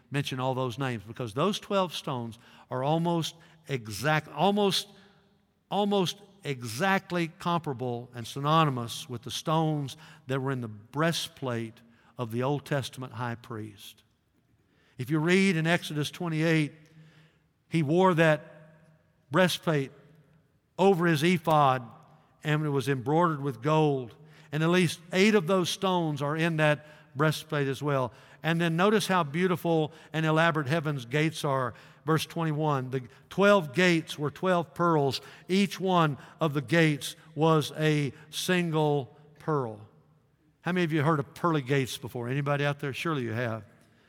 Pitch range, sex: 135-170 Hz, male